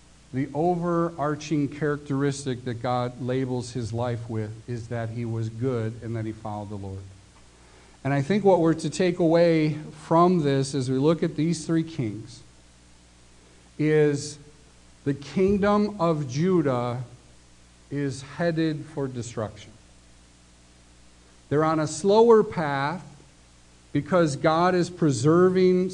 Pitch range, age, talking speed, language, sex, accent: 115-155 Hz, 50-69, 125 wpm, English, male, American